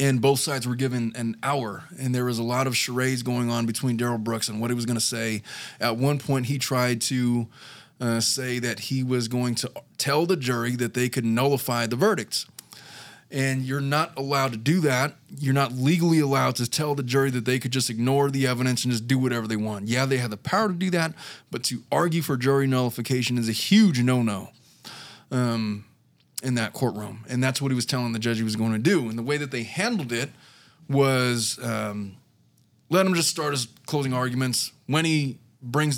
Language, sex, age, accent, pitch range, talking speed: English, male, 20-39, American, 120-140 Hz, 215 wpm